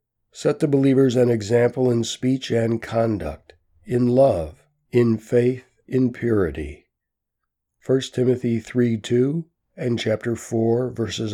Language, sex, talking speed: English, male, 120 wpm